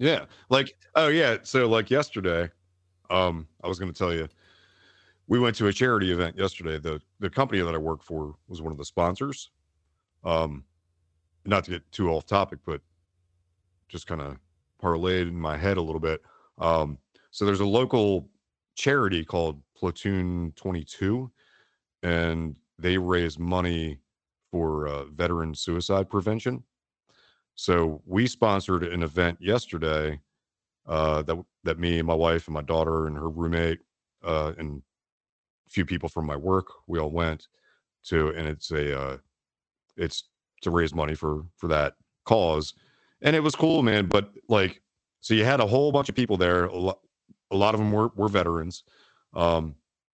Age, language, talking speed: 40-59, English, 165 wpm